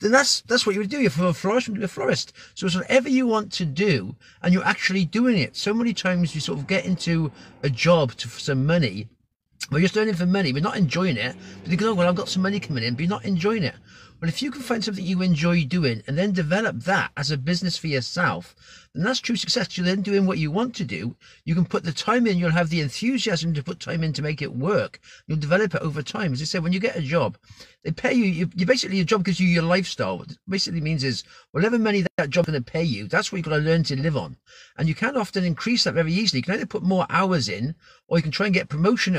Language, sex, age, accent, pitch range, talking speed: English, male, 40-59, British, 150-200 Hz, 280 wpm